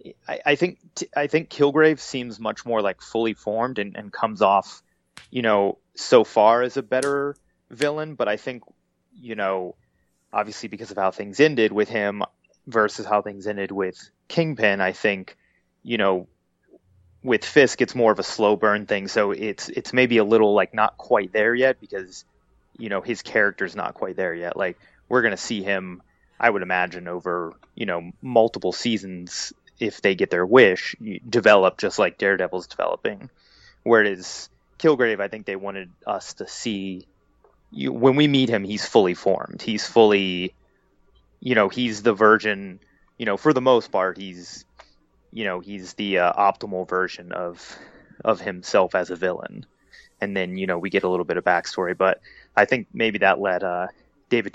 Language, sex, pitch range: English, male, 95-115 Hz